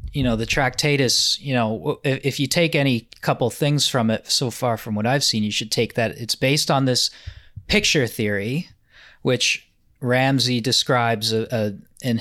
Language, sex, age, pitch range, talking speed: English, male, 20-39, 110-130 Hz, 175 wpm